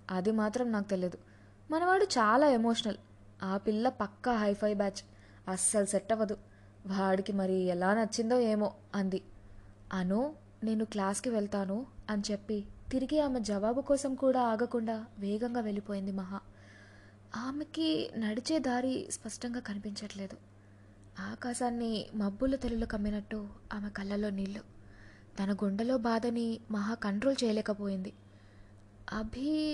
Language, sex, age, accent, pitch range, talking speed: Telugu, female, 20-39, native, 195-260 Hz, 110 wpm